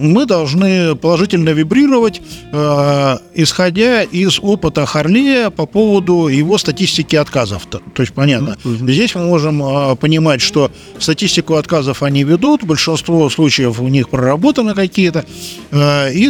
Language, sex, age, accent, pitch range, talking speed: Russian, male, 50-69, native, 140-180 Hz, 125 wpm